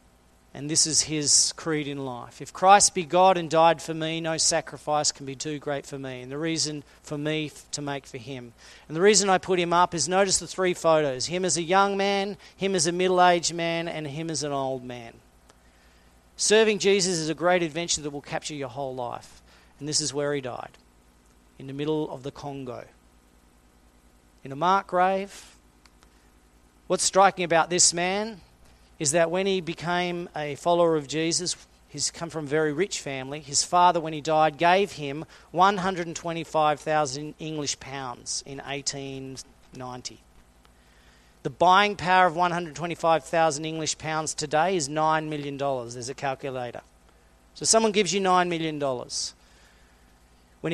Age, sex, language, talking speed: 40-59, male, English, 180 wpm